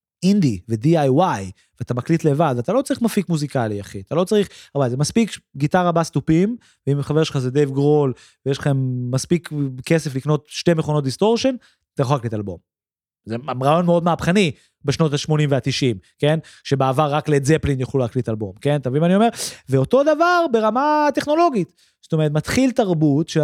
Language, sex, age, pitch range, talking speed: Hebrew, male, 30-49, 130-195 Hz, 160 wpm